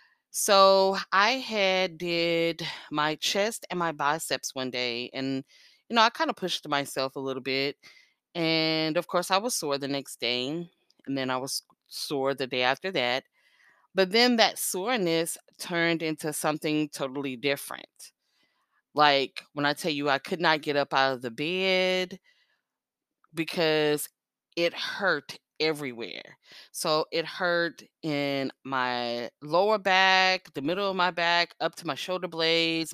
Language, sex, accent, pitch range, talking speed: English, female, American, 140-180 Hz, 155 wpm